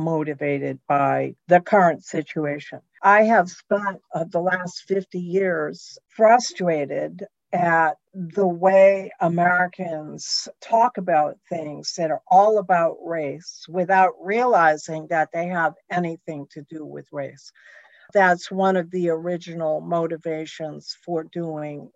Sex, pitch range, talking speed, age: female, 160-190 Hz, 120 wpm, 60-79